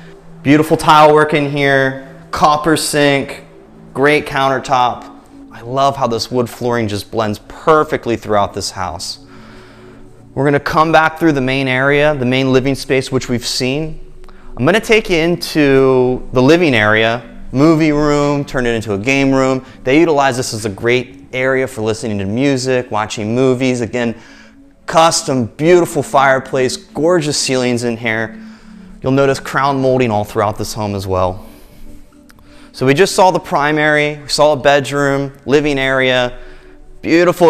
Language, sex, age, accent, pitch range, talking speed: English, male, 30-49, American, 115-145 Hz, 155 wpm